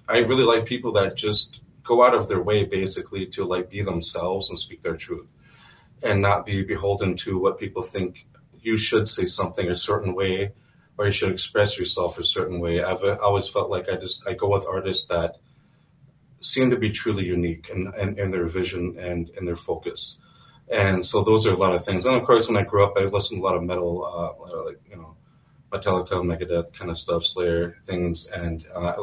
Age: 30-49